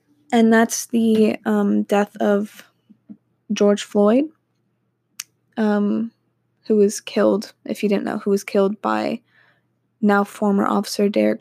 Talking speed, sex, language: 125 wpm, female, English